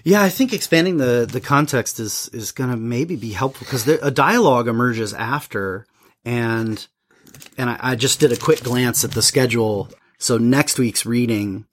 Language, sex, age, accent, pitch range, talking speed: English, male, 30-49, American, 120-155 Hz, 175 wpm